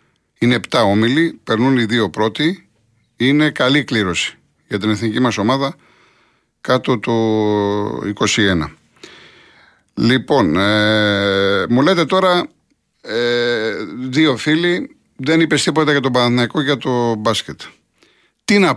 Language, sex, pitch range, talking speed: Greek, male, 115-175 Hz, 120 wpm